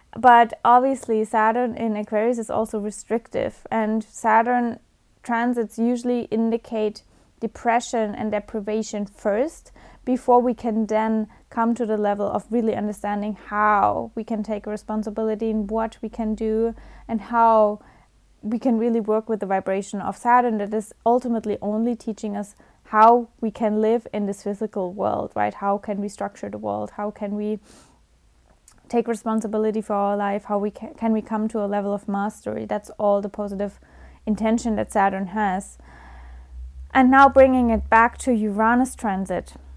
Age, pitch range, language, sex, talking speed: 20-39, 205-235 Hz, English, female, 160 wpm